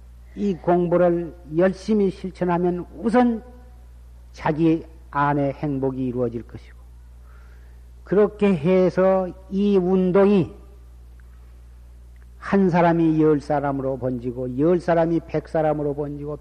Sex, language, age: male, Korean, 50-69